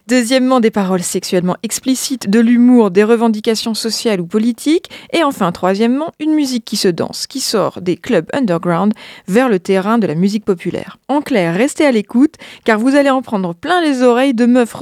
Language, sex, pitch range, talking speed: French, female, 195-250 Hz, 190 wpm